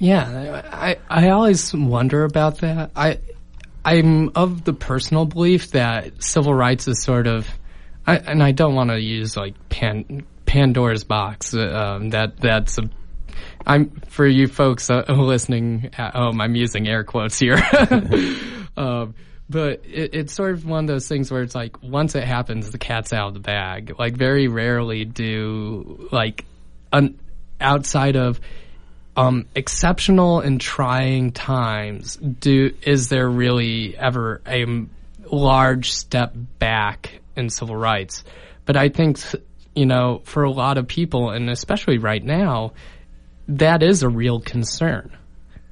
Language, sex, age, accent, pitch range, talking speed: English, male, 20-39, American, 110-145 Hz, 150 wpm